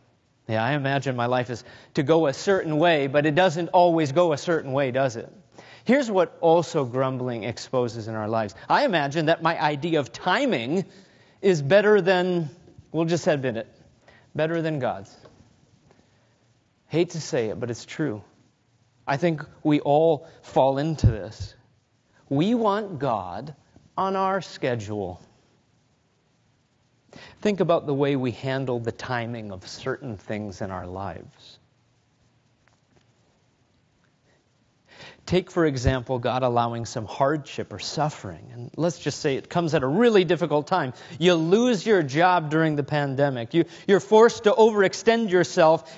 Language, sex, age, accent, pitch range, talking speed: English, male, 30-49, American, 120-170 Hz, 145 wpm